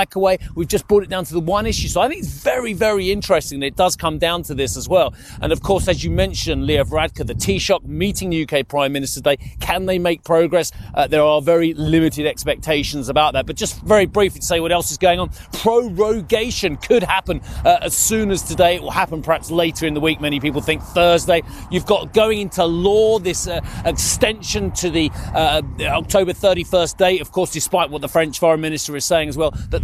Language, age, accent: English, 30-49, British